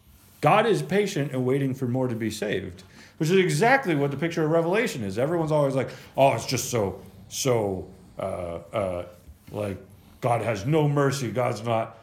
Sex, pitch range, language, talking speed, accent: male, 110-145 Hz, English, 180 wpm, American